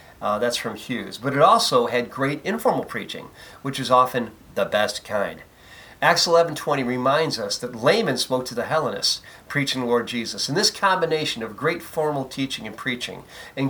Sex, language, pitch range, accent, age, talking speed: male, English, 125-165 Hz, American, 50-69, 180 wpm